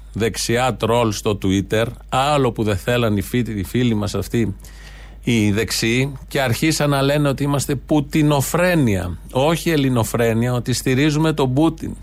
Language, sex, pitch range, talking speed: Greek, male, 115-155 Hz, 140 wpm